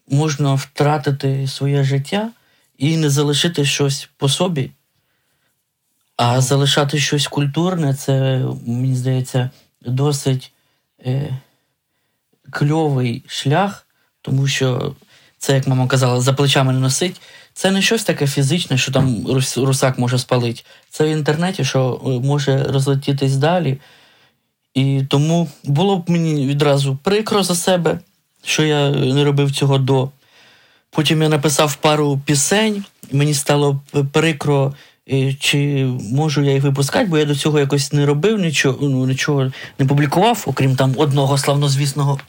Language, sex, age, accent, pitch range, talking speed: Ukrainian, male, 20-39, native, 135-155 Hz, 130 wpm